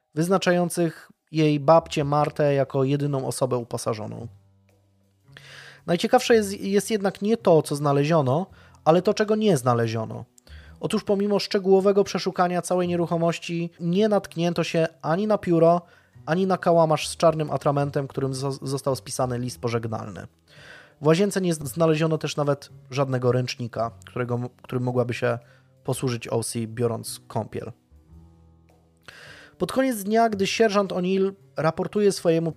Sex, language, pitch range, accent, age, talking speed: male, Polish, 130-175 Hz, native, 20-39, 125 wpm